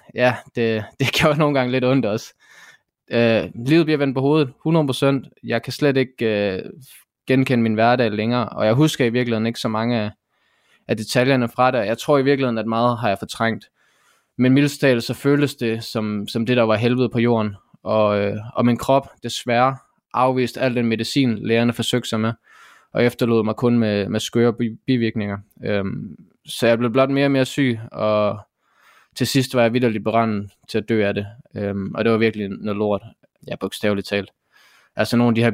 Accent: Danish